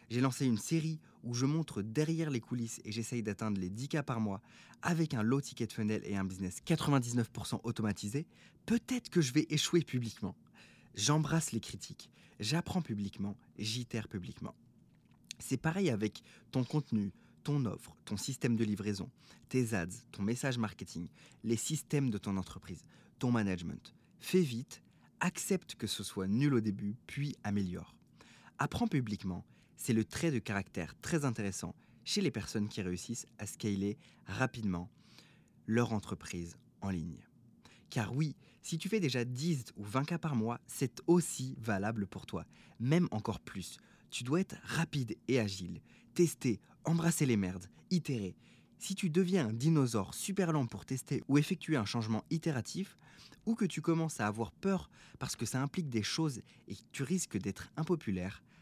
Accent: French